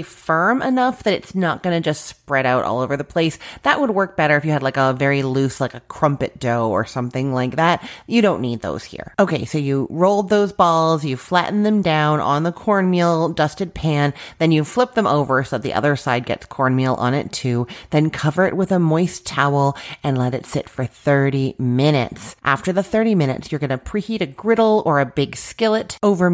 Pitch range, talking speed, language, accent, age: 140-195 Hz, 220 wpm, English, American, 30-49